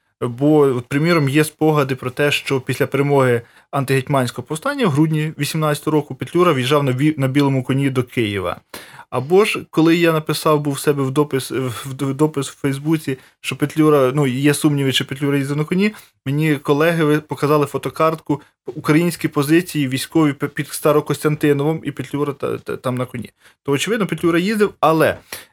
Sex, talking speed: male, 160 wpm